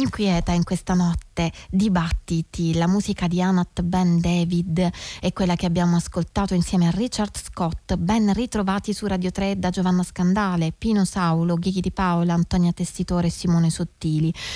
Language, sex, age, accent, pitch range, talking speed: Italian, female, 20-39, native, 170-210 Hz, 160 wpm